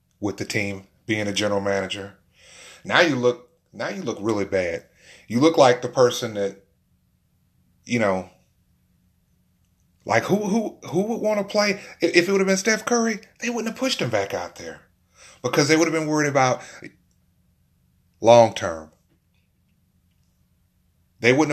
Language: English